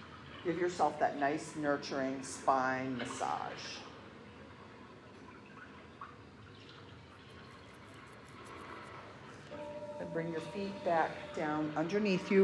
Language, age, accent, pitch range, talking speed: English, 50-69, American, 155-210 Hz, 70 wpm